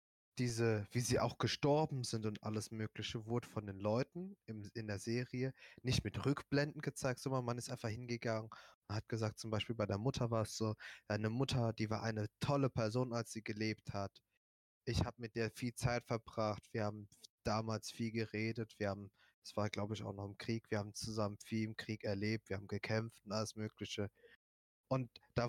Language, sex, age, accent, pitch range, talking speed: German, male, 20-39, German, 105-125 Hz, 200 wpm